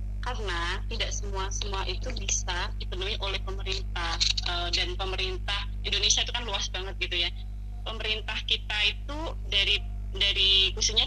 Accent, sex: native, female